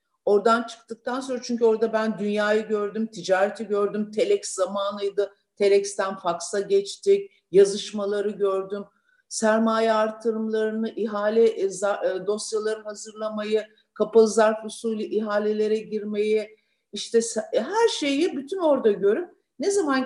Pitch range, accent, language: 190-235 Hz, native, Turkish